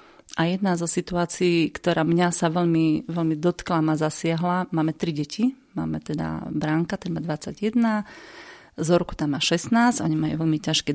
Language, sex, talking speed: Slovak, female, 160 wpm